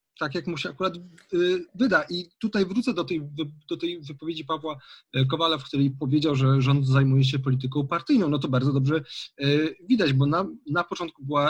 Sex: male